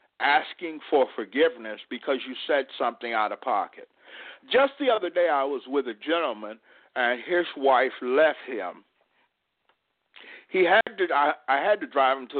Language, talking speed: English, 165 wpm